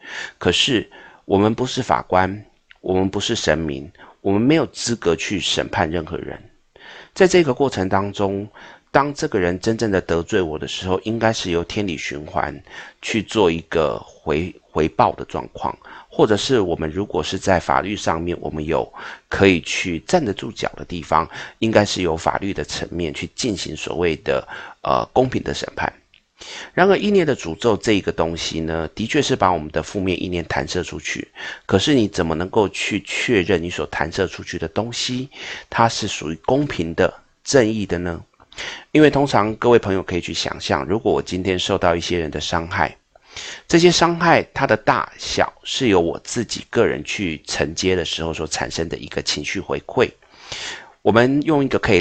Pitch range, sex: 85-110 Hz, male